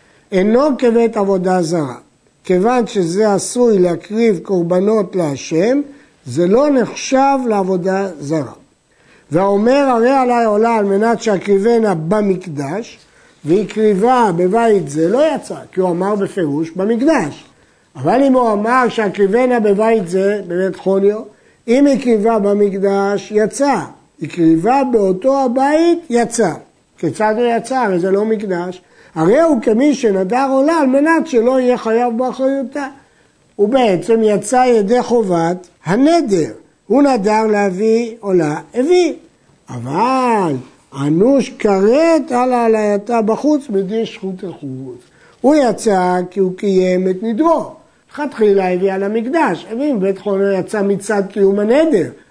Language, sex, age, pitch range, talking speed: Hebrew, male, 60-79, 190-250 Hz, 125 wpm